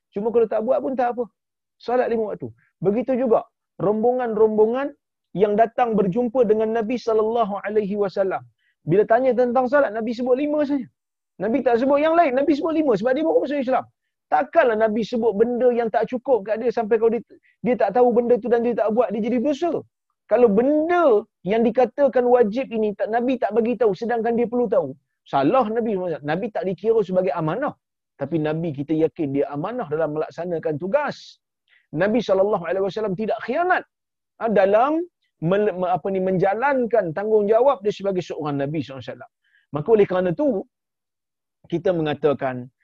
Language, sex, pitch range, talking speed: Malayalam, male, 160-245 Hz, 170 wpm